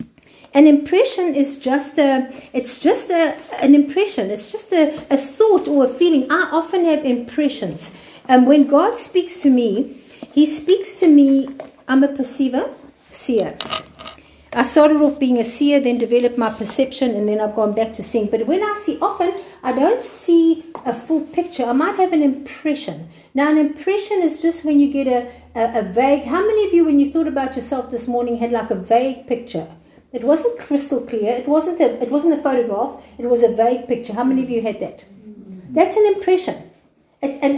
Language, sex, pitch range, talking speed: English, female, 245-320 Hz, 195 wpm